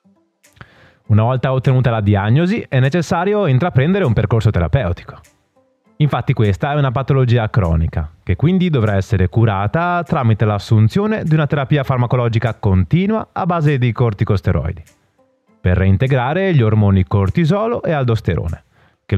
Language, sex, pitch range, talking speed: Italian, male, 105-165 Hz, 130 wpm